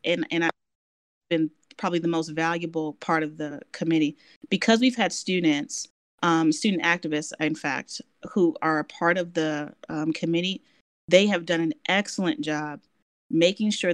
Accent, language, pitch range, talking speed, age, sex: American, English, 170-230 Hz, 160 wpm, 30-49, female